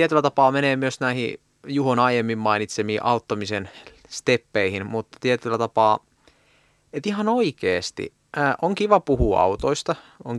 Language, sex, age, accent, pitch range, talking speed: Finnish, male, 30-49, native, 105-145 Hz, 120 wpm